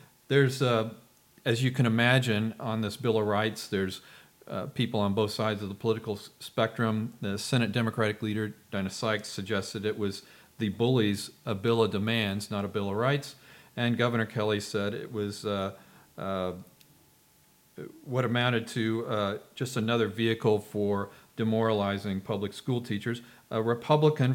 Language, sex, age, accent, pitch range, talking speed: English, male, 40-59, American, 105-130 Hz, 155 wpm